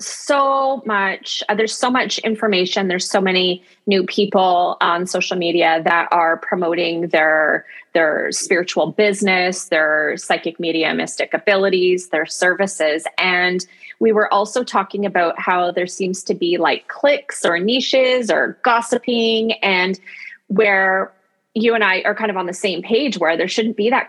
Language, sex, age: English, female, 20-39